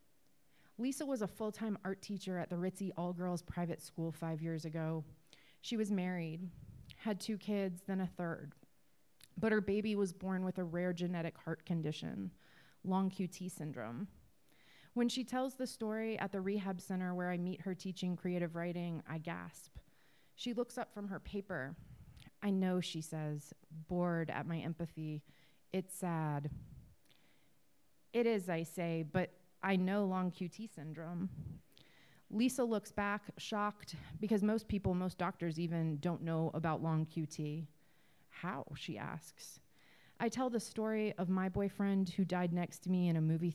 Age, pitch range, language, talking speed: 30-49, 160-195 Hz, English, 160 wpm